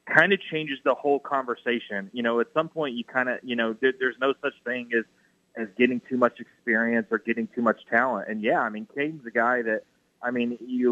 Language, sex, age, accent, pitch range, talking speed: English, male, 30-49, American, 115-130 Hz, 235 wpm